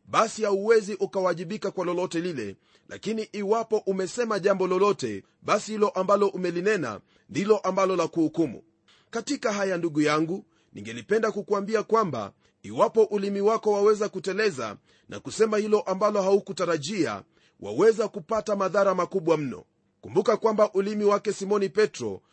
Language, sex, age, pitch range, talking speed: Swahili, male, 40-59, 185-220 Hz, 125 wpm